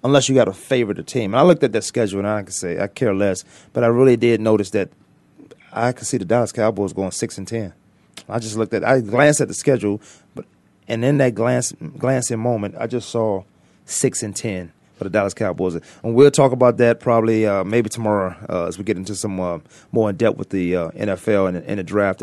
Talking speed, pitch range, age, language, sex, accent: 240 wpm, 100-125 Hz, 30-49, English, male, American